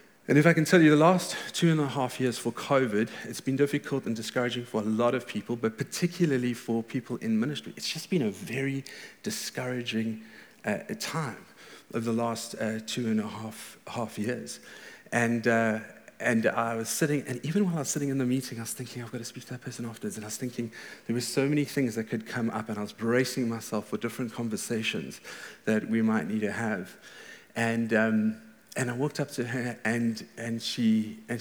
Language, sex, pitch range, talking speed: English, male, 115-150 Hz, 210 wpm